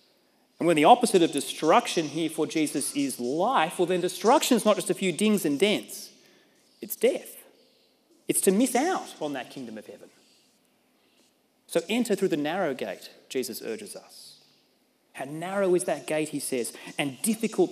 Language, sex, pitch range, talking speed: English, male, 165-240 Hz, 175 wpm